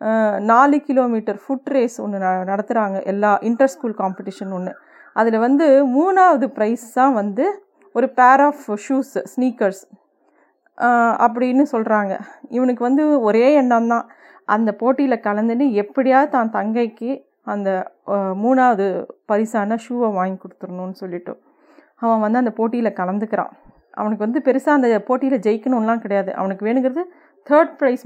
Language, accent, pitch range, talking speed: Tamil, native, 215-270 Hz, 125 wpm